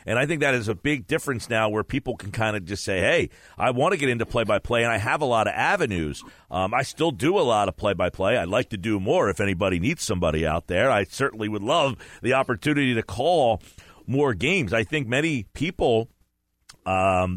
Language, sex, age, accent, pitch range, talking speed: English, male, 40-59, American, 95-135 Hz, 220 wpm